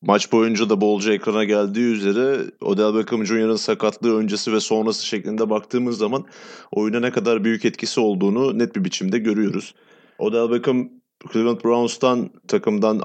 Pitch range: 105-125 Hz